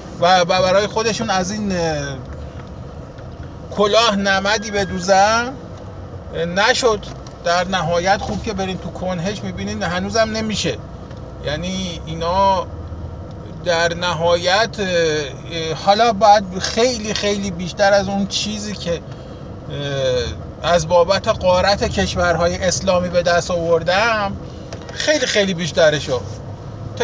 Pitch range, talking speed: 165-205 Hz, 100 wpm